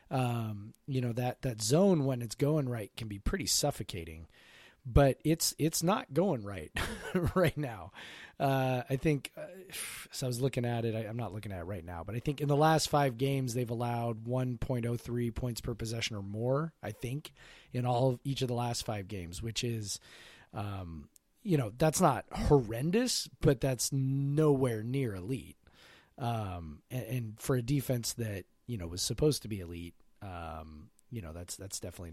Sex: male